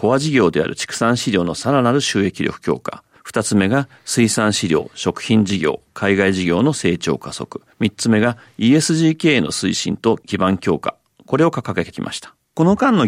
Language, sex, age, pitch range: Japanese, male, 40-59, 105-140 Hz